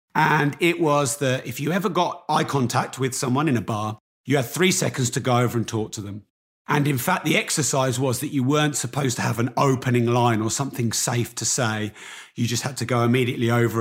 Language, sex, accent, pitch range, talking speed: English, male, British, 120-155 Hz, 230 wpm